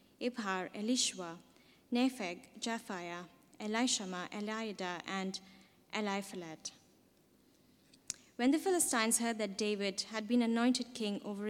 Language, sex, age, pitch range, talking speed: English, female, 20-39, 195-250 Hz, 100 wpm